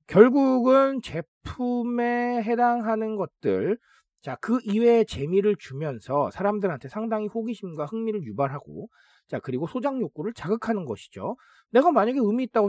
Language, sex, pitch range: Korean, male, 135-225 Hz